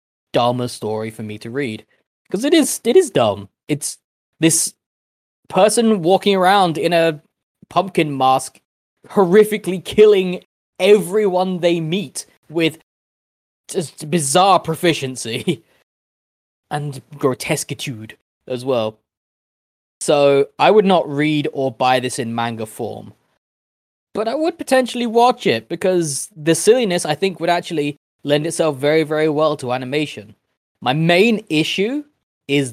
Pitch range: 120-170 Hz